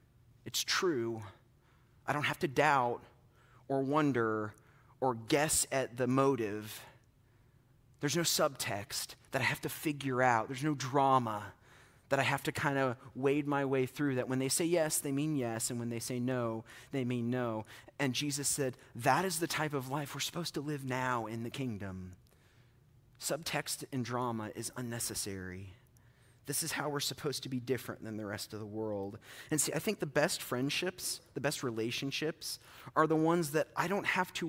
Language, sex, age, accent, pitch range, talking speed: English, male, 30-49, American, 120-140 Hz, 185 wpm